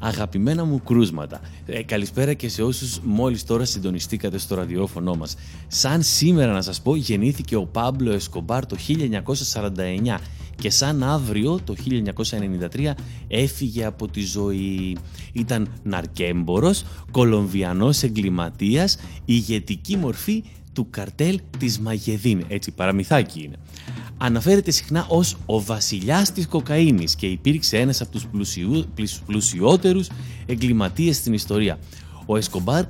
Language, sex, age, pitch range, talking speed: Greek, male, 30-49, 95-140 Hz, 120 wpm